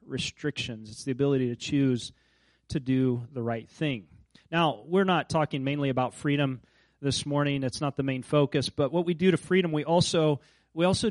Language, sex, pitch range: English, male, 130-175 Hz